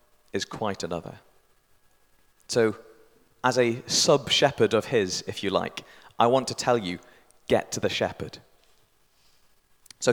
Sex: male